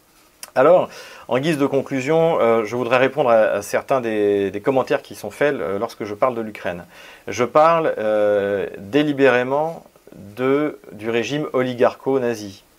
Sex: male